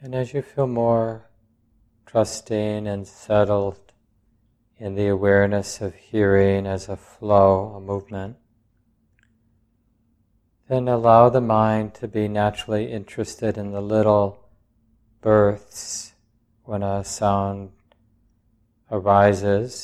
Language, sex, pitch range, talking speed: English, male, 100-115 Hz, 105 wpm